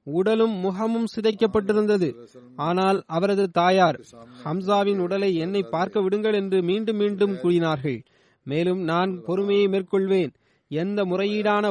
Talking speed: 110 wpm